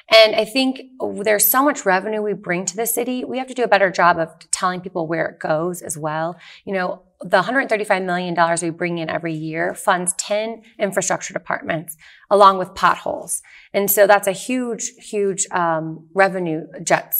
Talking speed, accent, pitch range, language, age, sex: 180 wpm, American, 175-210 Hz, English, 30-49, female